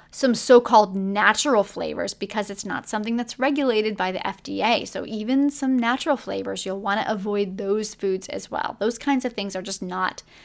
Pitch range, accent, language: 205-260 Hz, American, English